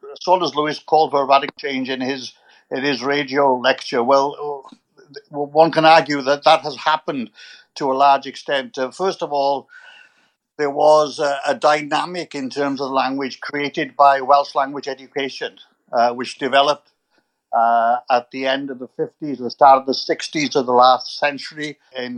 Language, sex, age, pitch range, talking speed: English, male, 60-79, 125-145 Hz, 170 wpm